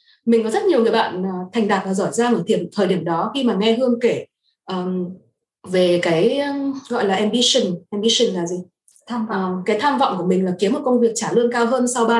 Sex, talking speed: female, 225 wpm